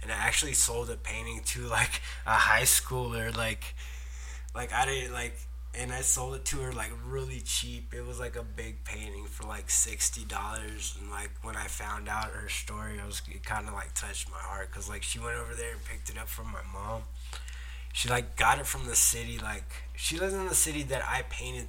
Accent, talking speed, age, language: American, 220 wpm, 20-39, English